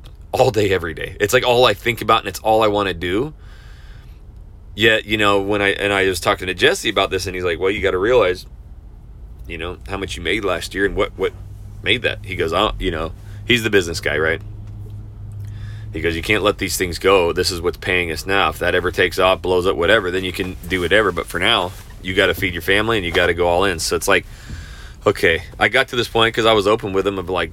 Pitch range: 90-105 Hz